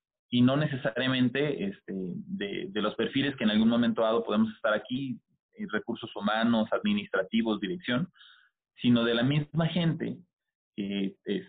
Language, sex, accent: Spanish, male, Mexican